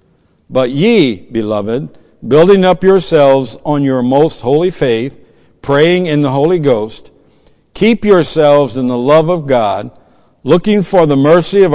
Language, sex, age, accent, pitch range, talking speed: English, male, 60-79, American, 115-160 Hz, 145 wpm